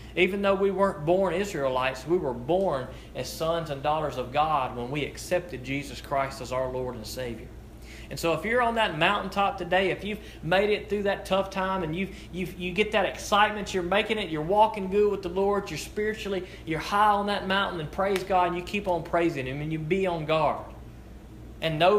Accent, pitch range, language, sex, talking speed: American, 150-190 Hz, English, male, 215 wpm